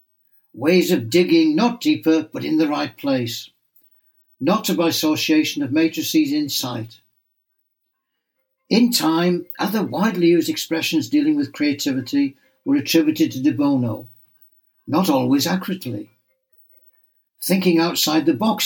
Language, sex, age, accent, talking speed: English, male, 60-79, British, 120 wpm